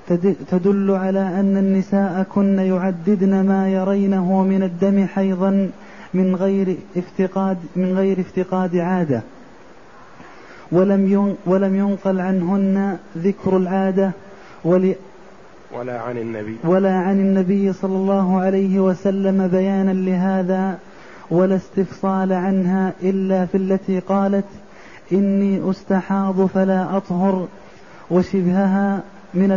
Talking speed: 85 wpm